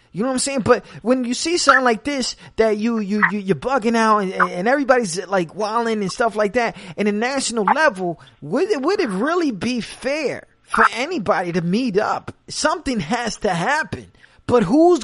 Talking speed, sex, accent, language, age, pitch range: 205 wpm, male, American, English, 30-49, 185-260 Hz